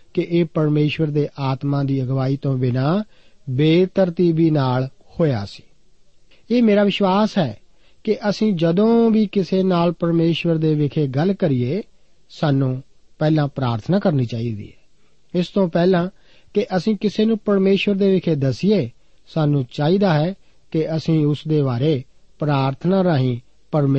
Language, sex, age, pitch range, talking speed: Punjabi, male, 50-69, 140-185 Hz, 120 wpm